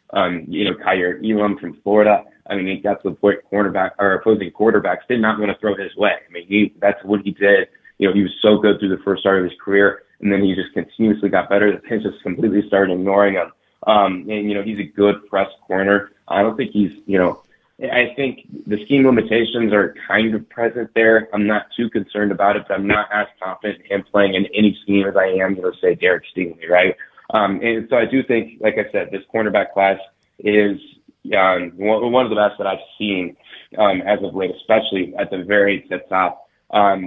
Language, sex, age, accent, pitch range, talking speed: English, male, 20-39, American, 95-105 Hz, 230 wpm